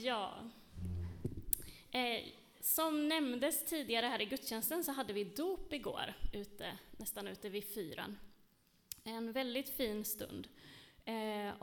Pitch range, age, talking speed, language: 210-275 Hz, 20-39, 120 wpm, Swedish